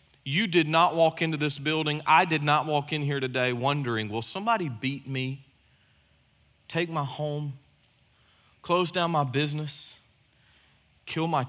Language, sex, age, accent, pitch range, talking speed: English, male, 40-59, American, 130-170 Hz, 145 wpm